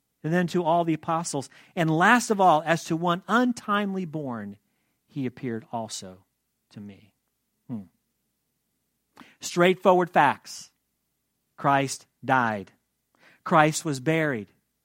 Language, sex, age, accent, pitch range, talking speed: English, male, 40-59, American, 145-200 Hz, 115 wpm